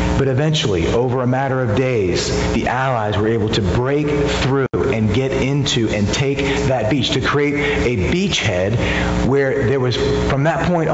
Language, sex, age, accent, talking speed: English, male, 40-59, American, 170 wpm